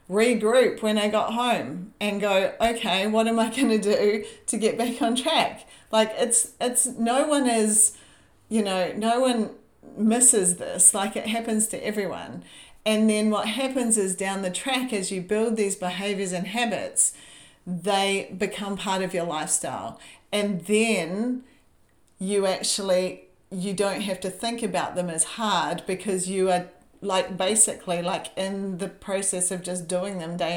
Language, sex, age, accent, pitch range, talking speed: English, female, 40-59, Australian, 185-230 Hz, 165 wpm